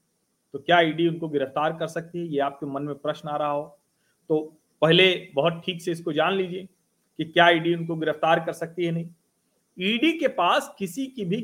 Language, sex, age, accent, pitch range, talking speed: Hindi, male, 40-59, native, 160-240 Hz, 205 wpm